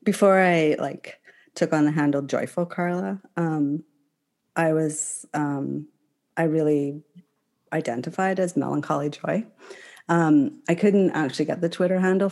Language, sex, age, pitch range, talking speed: English, female, 30-49, 145-175 Hz, 130 wpm